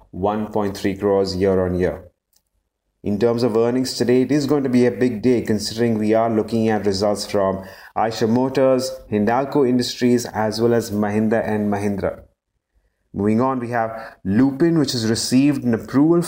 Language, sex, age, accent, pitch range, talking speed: English, male, 30-49, Indian, 110-130 Hz, 160 wpm